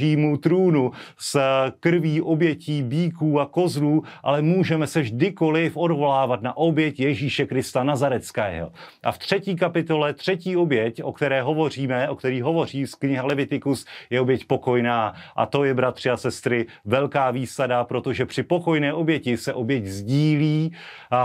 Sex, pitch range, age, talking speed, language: male, 120-145 Hz, 30-49, 140 wpm, Slovak